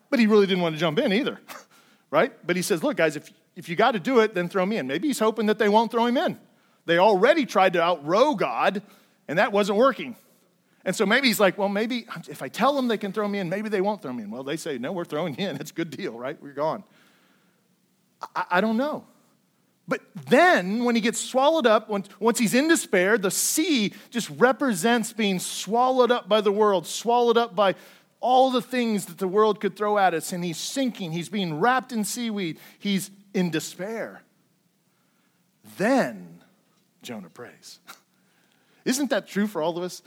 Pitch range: 195-260 Hz